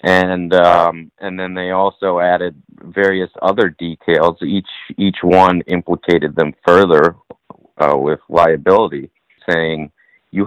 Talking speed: 120 wpm